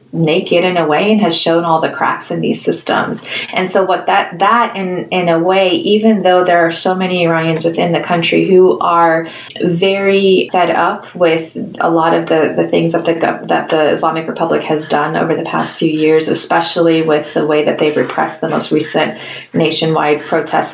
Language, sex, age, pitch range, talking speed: English, female, 20-39, 165-185 Hz, 200 wpm